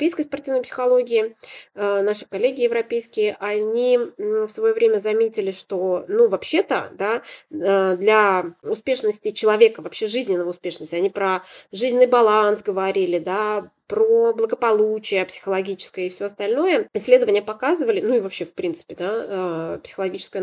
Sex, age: female, 20-39